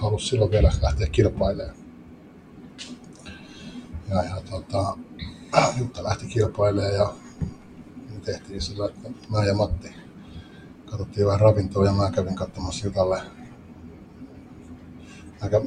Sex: male